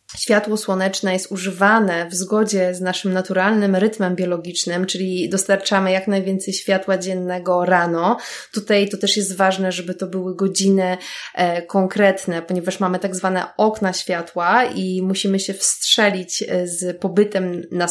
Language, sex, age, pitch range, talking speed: Polish, female, 20-39, 180-205 Hz, 135 wpm